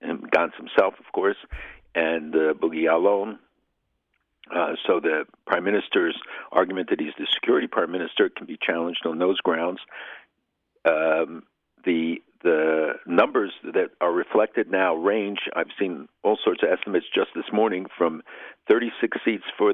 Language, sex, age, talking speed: English, male, 60-79, 150 wpm